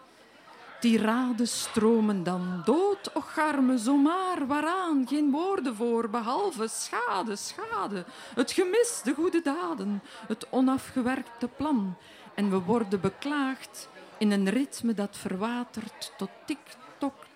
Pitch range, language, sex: 205-260 Hz, Dutch, female